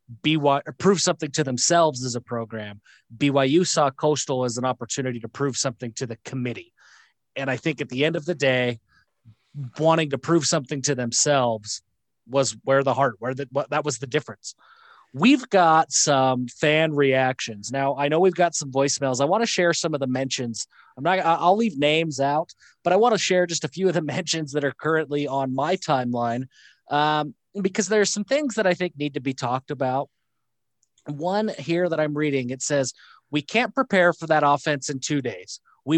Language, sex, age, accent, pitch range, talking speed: English, male, 30-49, American, 130-165 Hz, 200 wpm